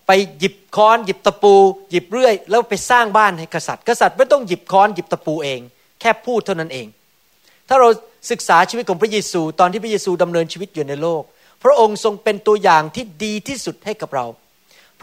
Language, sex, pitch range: Thai, male, 175-230 Hz